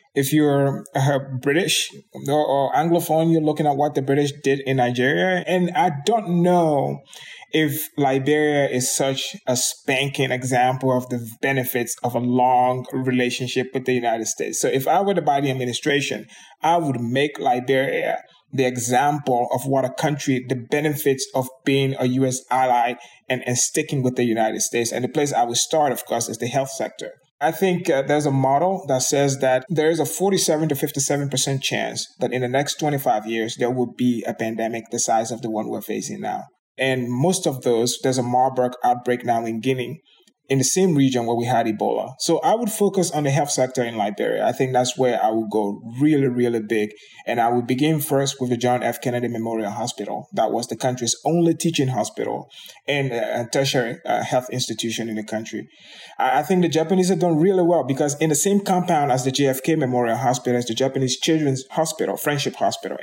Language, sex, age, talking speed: English, male, 20-39, 195 wpm